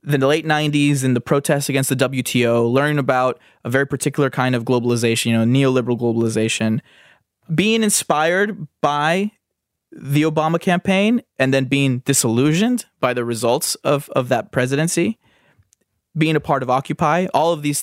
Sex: male